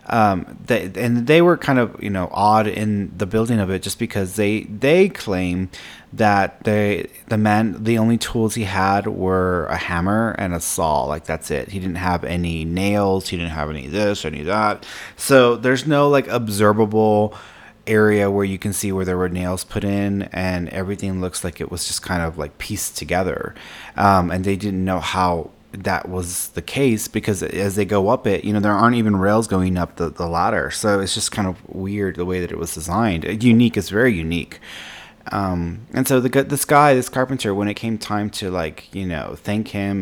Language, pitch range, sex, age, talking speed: English, 90-110 Hz, male, 30-49, 210 wpm